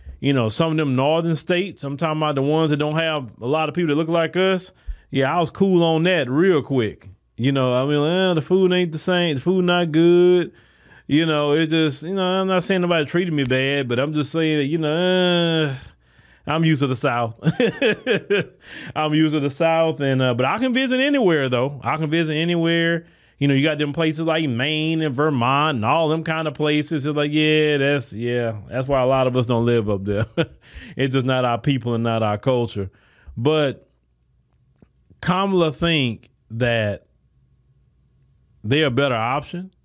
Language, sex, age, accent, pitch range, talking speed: English, male, 30-49, American, 125-165 Hz, 205 wpm